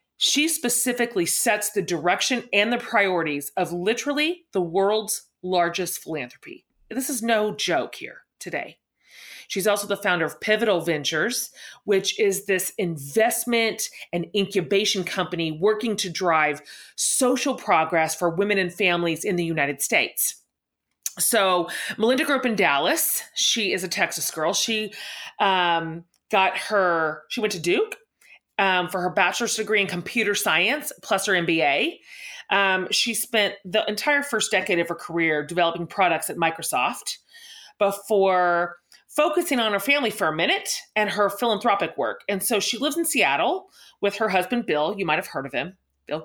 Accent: American